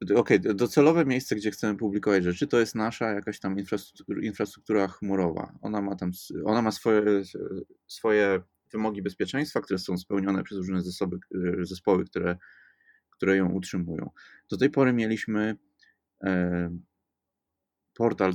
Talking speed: 130 wpm